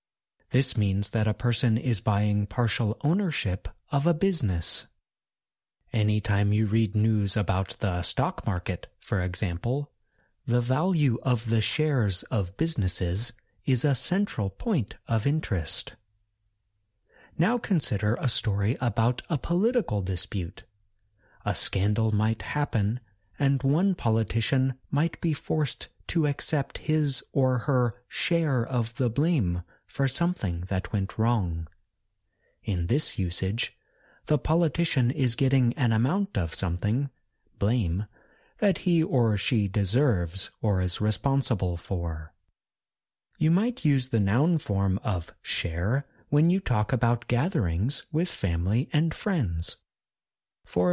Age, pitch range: 30-49, 100-140 Hz